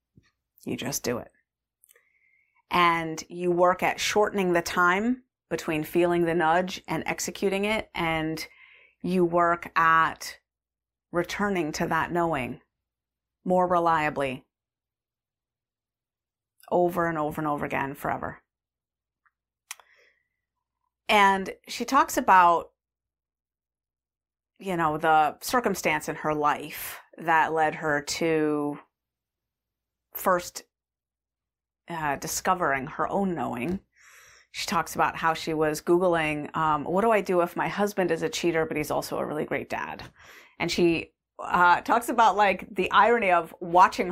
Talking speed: 125 wpm